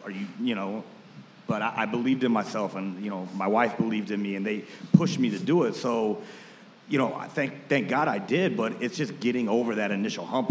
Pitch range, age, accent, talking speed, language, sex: 100-135 Hz, 30-49, American, 240 wpm, English, male